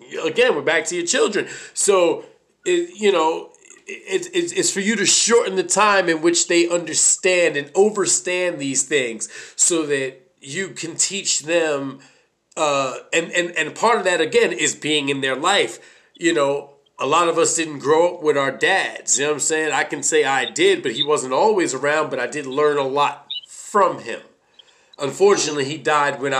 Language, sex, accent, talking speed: English, male, American, 195 wpm